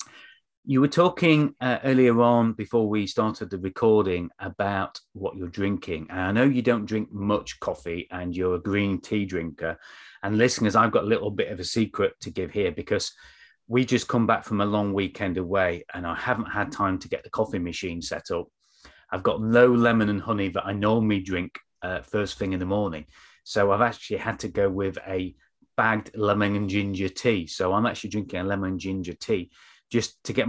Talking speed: 205 wpm